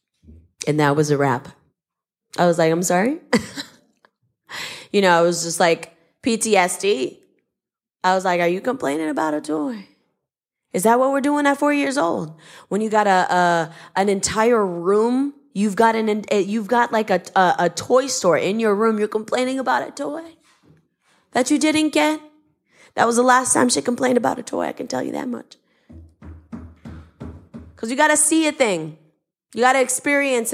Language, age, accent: English, 20-39, American